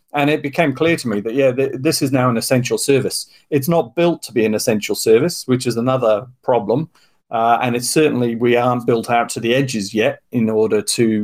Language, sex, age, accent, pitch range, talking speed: English, male, 40-59, British, 115-135 Hz, 225 wpm